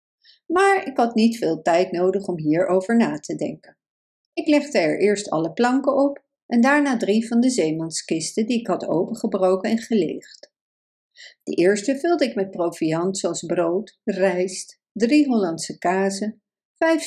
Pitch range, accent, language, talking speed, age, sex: 185-270 Hz, Dutch, Dutch, 155 wpm, 60-79, female